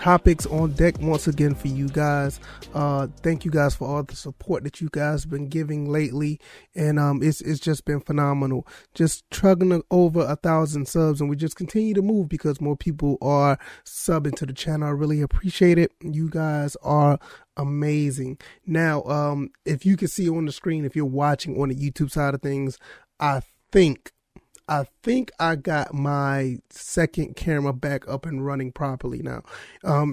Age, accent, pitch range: 30-49, American, 140-165 Hz